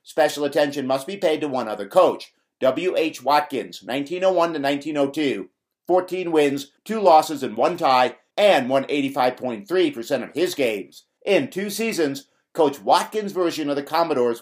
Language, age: English, 50-69